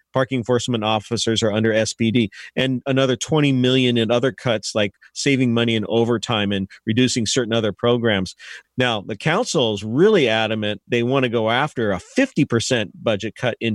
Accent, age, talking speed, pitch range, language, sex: American, 40-59, 165 wpm, 115-145 Hz, English, male